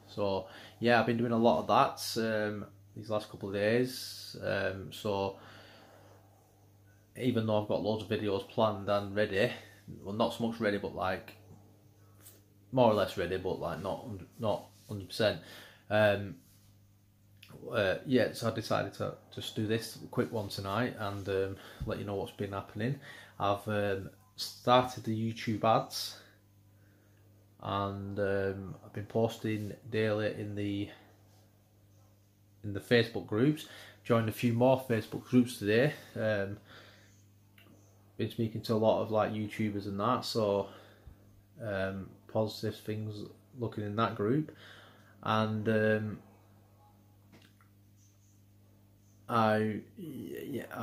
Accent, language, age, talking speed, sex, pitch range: British, English, 20-39, 130 wpm, male, 100-110 Hz